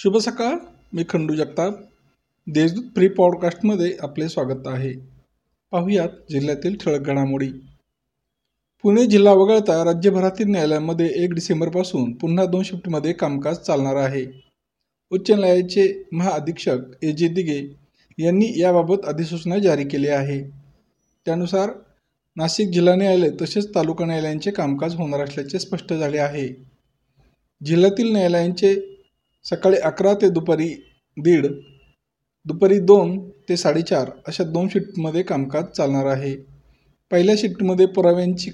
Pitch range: 140-190 Hz